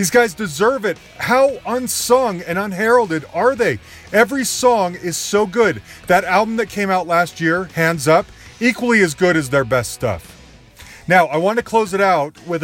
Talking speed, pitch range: 185 wpm, 145-195 Hz